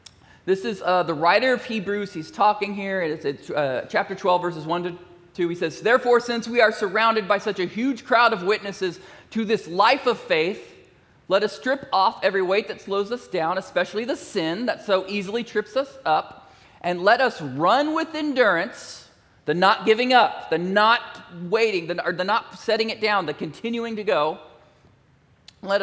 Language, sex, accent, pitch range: English, male, American, 170-225 Hz